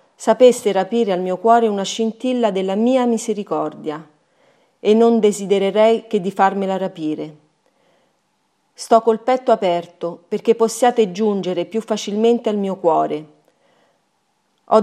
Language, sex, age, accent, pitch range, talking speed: Italian, female, 40-59, native, 180-225 Hz, 120 wpm